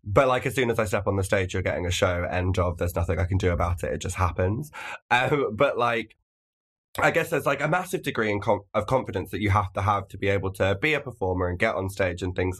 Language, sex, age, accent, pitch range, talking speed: English, male, 20-39, British, 95-140 Hz, 275 wpm